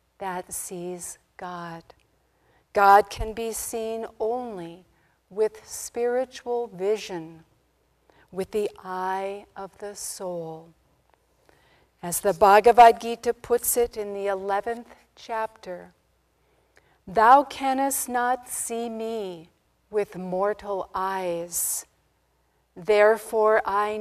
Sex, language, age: female, English, 50-69